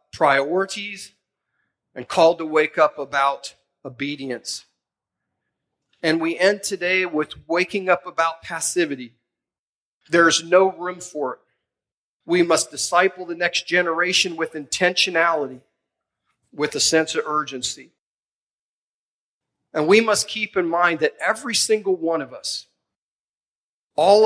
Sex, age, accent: male, 40-59, American